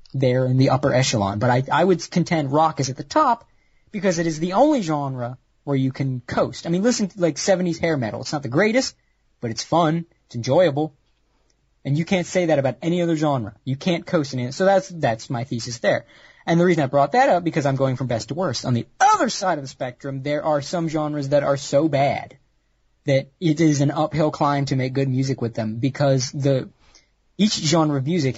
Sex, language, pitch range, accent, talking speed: male, English, 130-175 Hz, American, 235 wpm